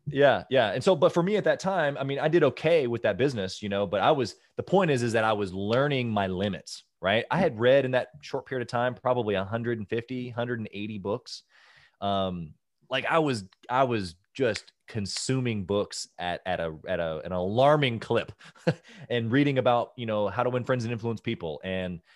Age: 20-39